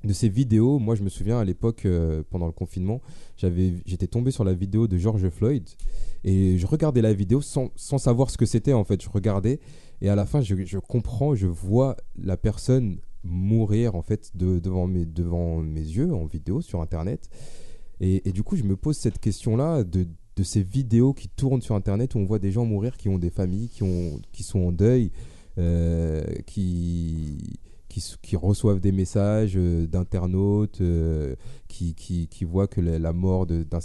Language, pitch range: French, 90-115 Hz